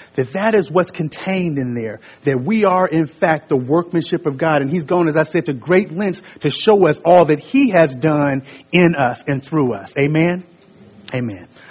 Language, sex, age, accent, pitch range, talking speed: English, male, 30-49, American, 130-170 Hz, 205 wpm